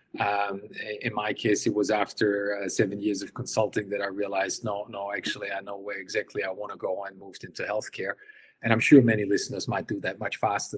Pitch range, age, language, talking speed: 100-120 Hz, 30-49, English, 225 wpm